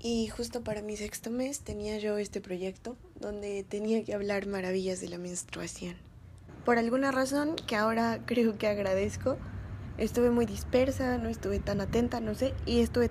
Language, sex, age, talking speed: Spanish, female, 20-39, 170 wpm